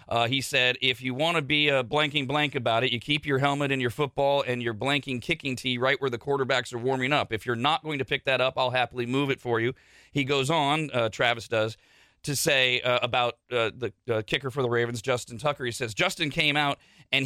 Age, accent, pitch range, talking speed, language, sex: 40-59, American, 130-160 Hz, 245 wpm, English, male